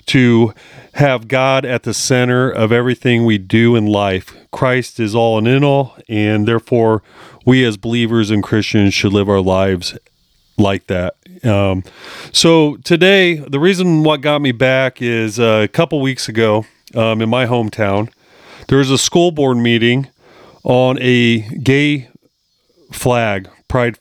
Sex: male